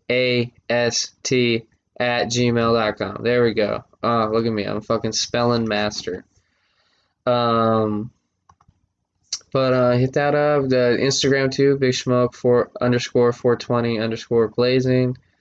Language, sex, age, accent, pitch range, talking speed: English, male, 20-39, American, 115-150 Hz, 125 wpm